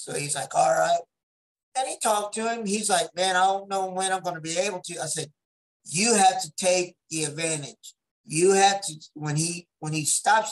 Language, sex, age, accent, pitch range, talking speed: English, male, 50-69, American, 160-215 Hz, 220 wpm